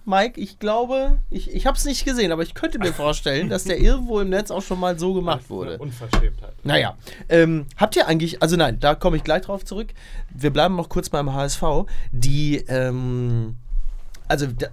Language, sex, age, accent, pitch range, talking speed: German, male, 30-49, German, 130-190 Hz, 200 wpm